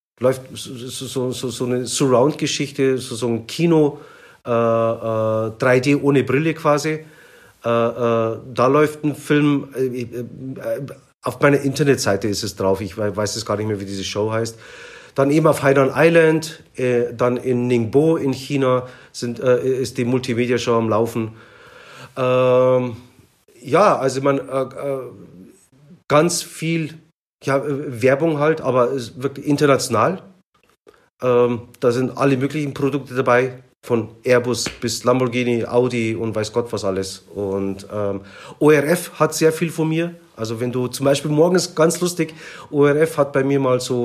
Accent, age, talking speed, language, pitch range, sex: German, 40-59, 155 wpm, German, 120-145 Hz, male